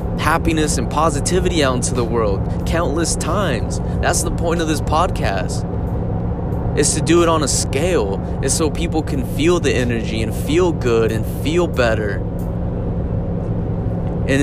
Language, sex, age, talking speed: English, male, 20-39, 150 wpm